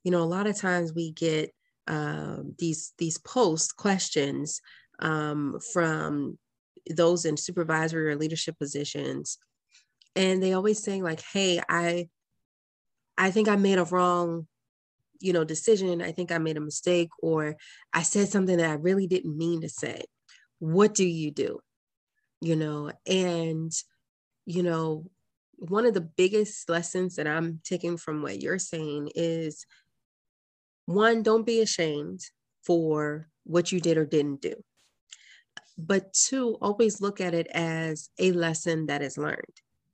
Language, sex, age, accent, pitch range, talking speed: English, female, 20-39, American, 155-185 Hz, 150 wpm